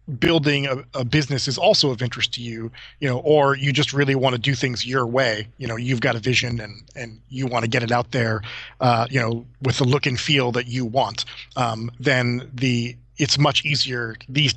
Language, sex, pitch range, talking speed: English, male, 120-135 Hz, 225 wpm